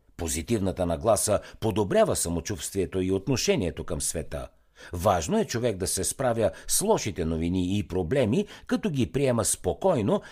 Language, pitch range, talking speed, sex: Bulgarian, 85-130 Hz, 135 wpm, male